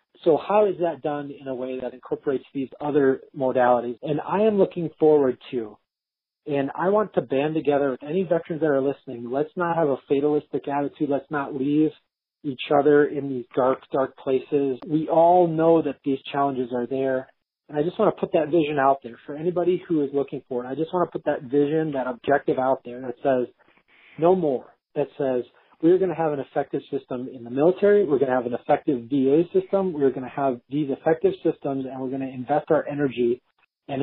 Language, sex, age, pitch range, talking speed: English, male, 40-59, 135-160 Hz, 215 wpm